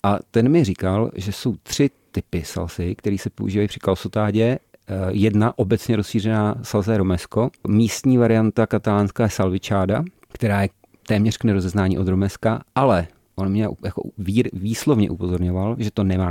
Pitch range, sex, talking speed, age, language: 95-110 Hz, male, 145 wpm, 40-59, Czech